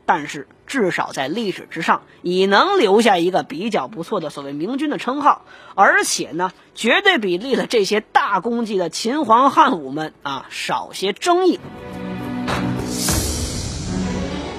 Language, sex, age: Chinese, female, 20-39